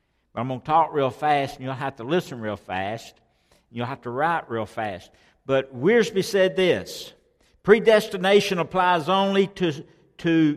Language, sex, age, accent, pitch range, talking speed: English, male, 60-79, American, 135-190 Hz, 160 wpm